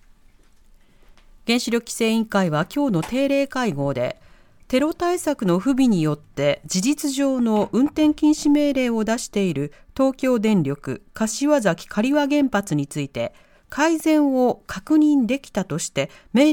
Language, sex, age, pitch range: Japanese, female, 40-59, 175-275 Hz